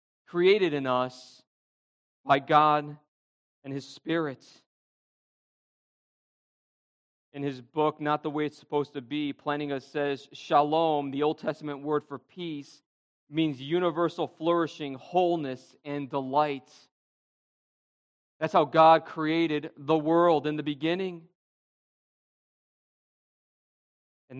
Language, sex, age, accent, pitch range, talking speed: English, male, 40-59, American, 145-170 Hz, 105 wpm